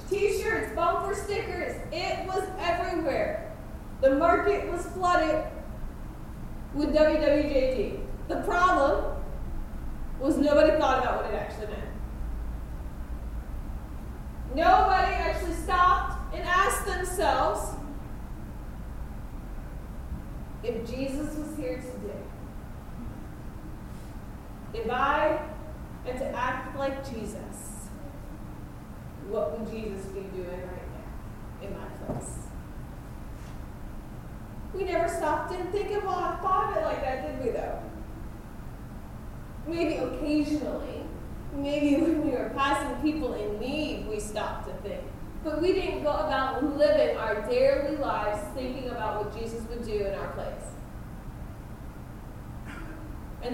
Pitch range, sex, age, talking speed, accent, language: 250-345 Hz, female, 30-49, 105 wpm, American, English